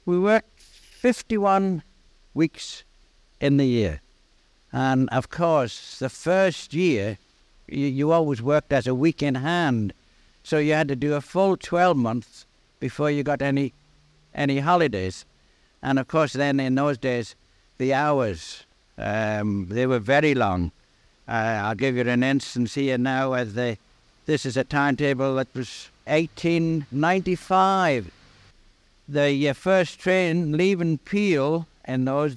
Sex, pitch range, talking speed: male, 125-165 Hz, 140 wpm